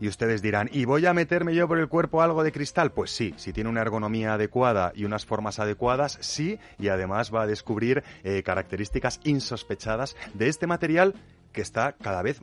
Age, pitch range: 30-49, 105-140 Hz